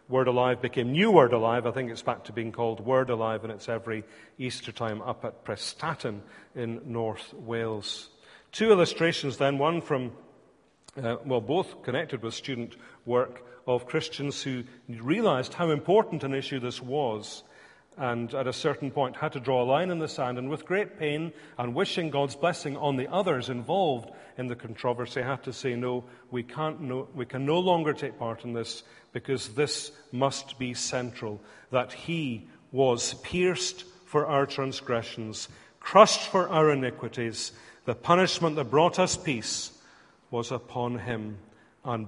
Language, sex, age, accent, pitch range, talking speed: English, male, 40-59, British, 120-150 Hz, 165 wpm